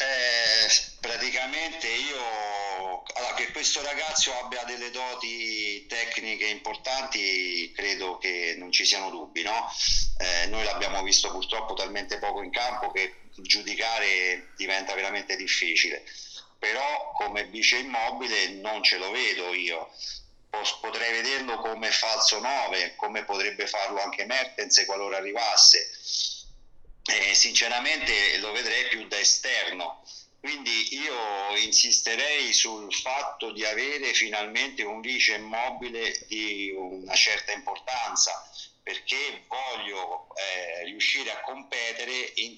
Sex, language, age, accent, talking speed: male, Italian, 50-69, native, 115 wpm